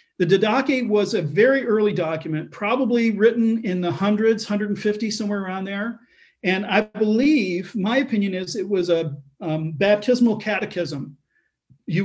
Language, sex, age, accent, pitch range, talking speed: English, male, 40-59, American, 165-220 Hz, 145 wpm